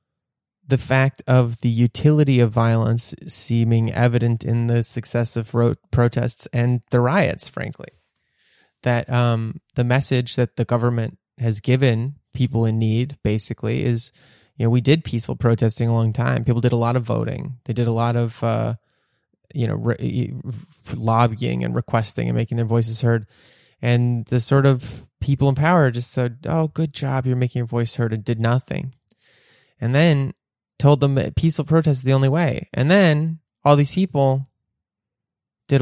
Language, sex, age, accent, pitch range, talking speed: English, male, 20-39, American, 115-135 Hz, 170 wpm